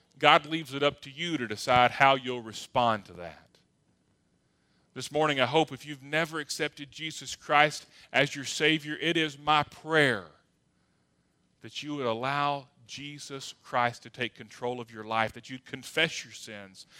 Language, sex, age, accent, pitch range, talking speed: English, male, 40-59, American, 120-150 Hz, 165 wpm